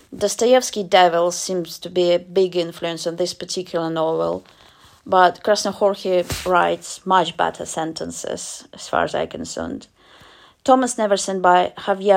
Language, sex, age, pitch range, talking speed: English, female, 30-49, 170-200 Hz, 135 wpm